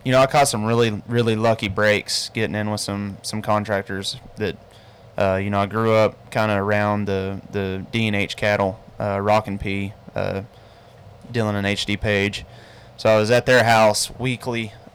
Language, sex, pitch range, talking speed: English, male, 100-110 Hz, 180 wpm